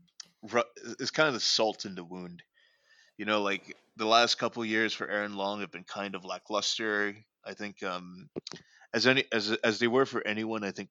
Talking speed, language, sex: 200 wpm, English, male